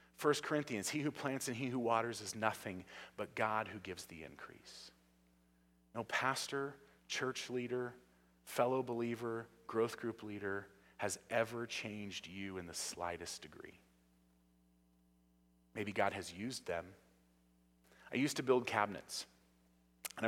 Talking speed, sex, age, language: 135 wpm, male, 30-49, English